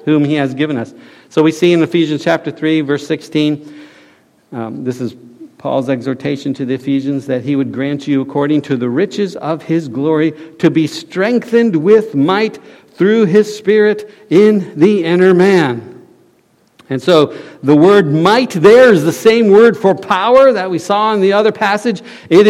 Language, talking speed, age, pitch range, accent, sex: English, 175 wpm, 60-79, 145-225 Hz, American, male